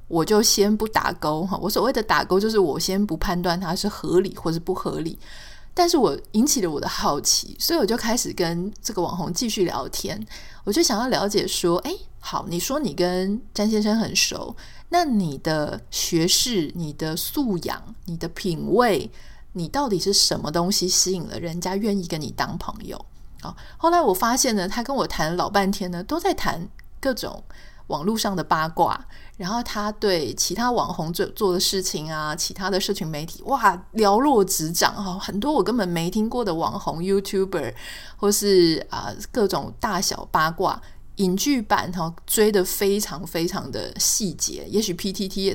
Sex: female